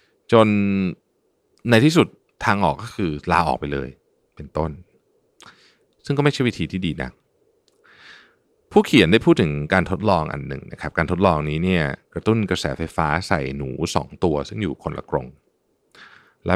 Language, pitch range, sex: Thai, 80-115 Hz, male